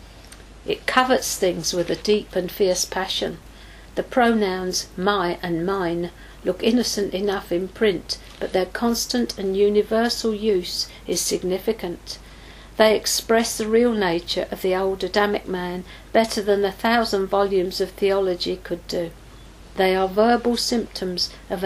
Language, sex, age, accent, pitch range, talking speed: English, female, 50-69, British, 185-230 Hz, 140 wpm